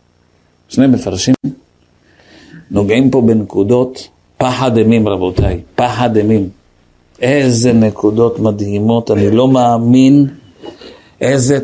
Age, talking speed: 50-69, 90 wpm